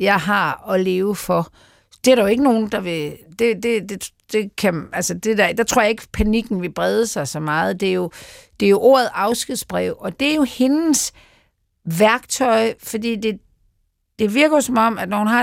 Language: Danish